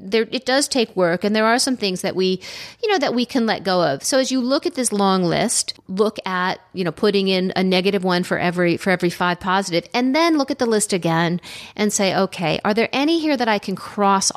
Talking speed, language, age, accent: 255 wpm, English, 40-59, American